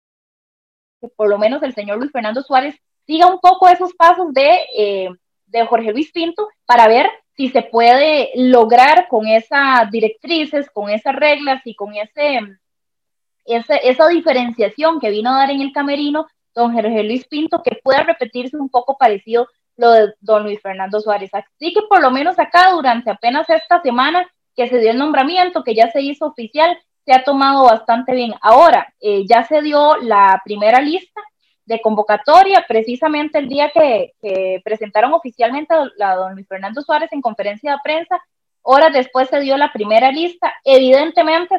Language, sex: Spanish, female